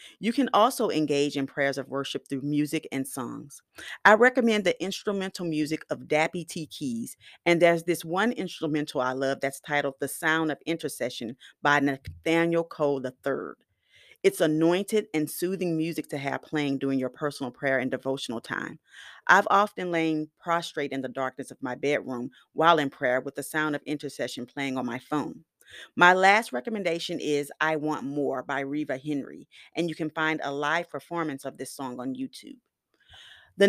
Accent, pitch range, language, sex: American, 140-175 Hz, English, female